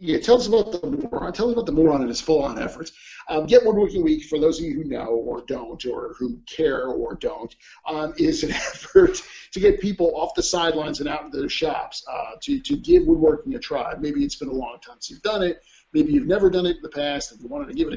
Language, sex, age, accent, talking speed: English, male, 40-59, American, 260 wpm